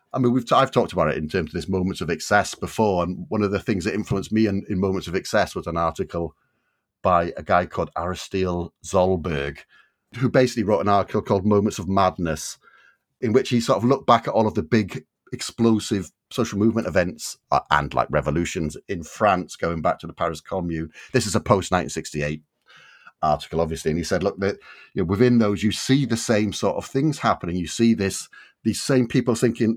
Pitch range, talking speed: 95-115 Hz, 210 wpm